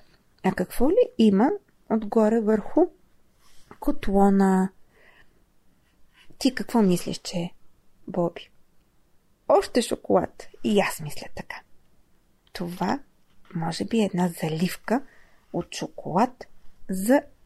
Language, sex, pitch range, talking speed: Bulgarian, female, 190-270 Hz, 95 wpm